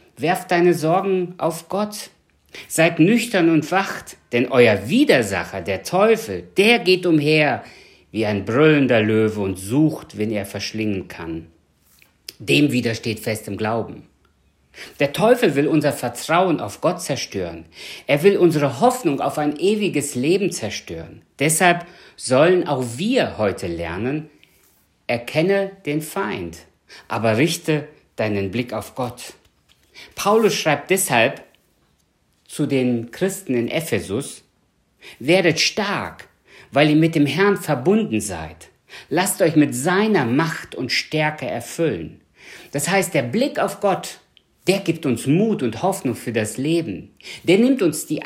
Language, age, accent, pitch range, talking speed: German, 50-69, German, 115-180 Hz, 135 wpm